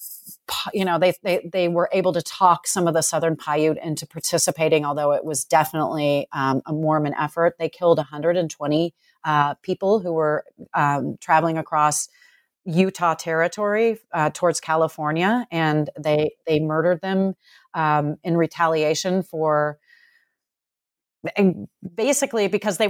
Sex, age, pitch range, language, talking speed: female, 30-49, 160-205 Hz, English, 140 wpm